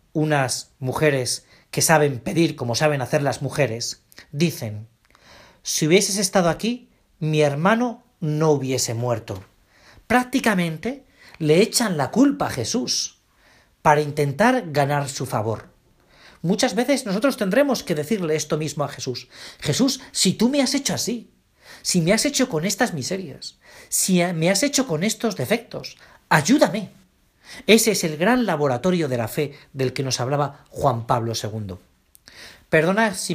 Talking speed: 145 wpm